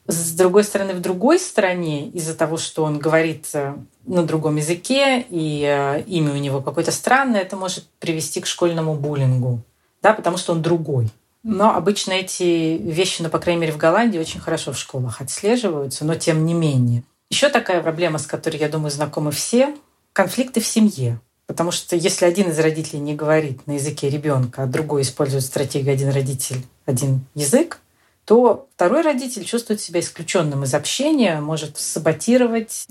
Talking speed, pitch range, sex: 165 wpm, 145-185 Hz, female